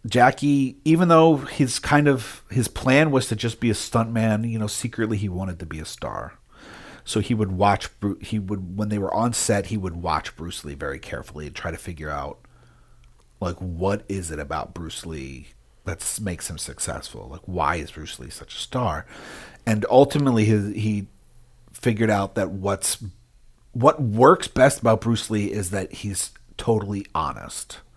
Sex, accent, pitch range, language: male, American, 95-120 Hz, English